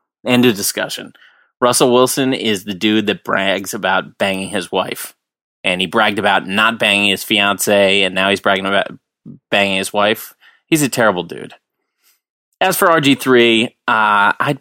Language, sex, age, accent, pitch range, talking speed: English, male, 30-49, American, 100-125 Hz, 160 wpm